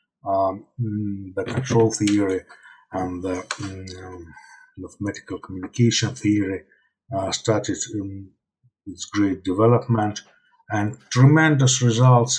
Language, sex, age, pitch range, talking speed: English, male, 50-69, 105-130 Hz, 90 wpm